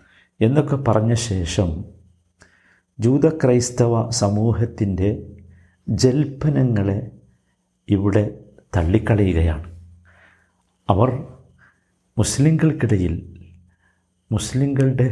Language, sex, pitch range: Malayalam, male, 90-125 Hz